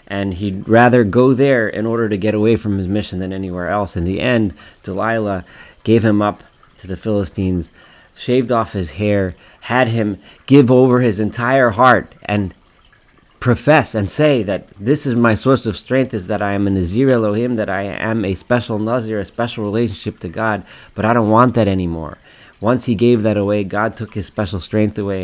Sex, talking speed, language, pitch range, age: male, 195 wpm, English, 90-115 Hz, 30-49